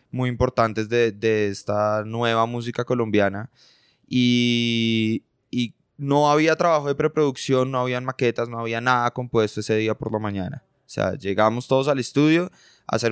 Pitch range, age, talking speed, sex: 115-135 Hz, 20-39, 160 wpm, male